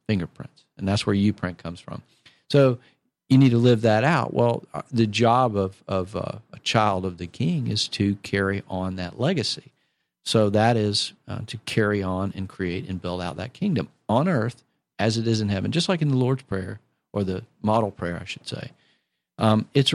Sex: male